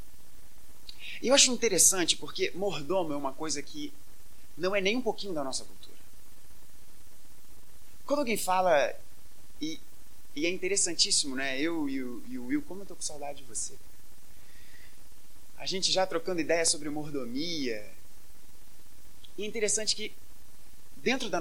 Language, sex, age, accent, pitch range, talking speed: Portuguese, male, 30-49, Brazilian, 130-205 Hz, 135 wpm